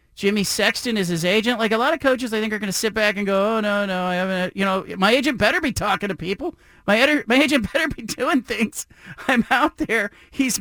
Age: 40-59